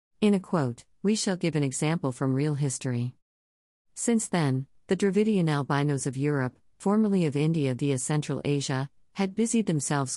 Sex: female